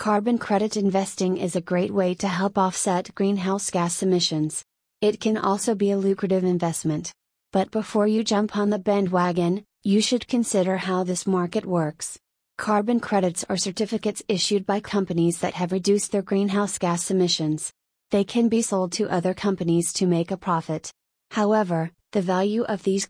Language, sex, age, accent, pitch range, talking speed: English, female, 30-49, American, 180-205 Hz, 165 wpm